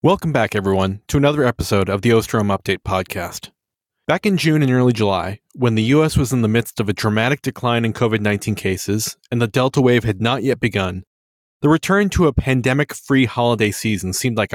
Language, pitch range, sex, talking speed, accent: English, 105-140 Hz, male, 200 wpm, American